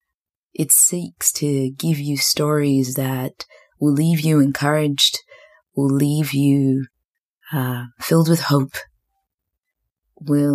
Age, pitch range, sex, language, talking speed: 20-39, 140-160 Hz, female, English, 110 wpm